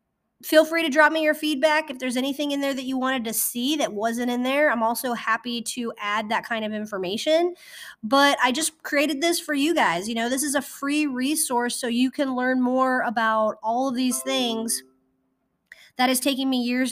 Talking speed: 215 wpm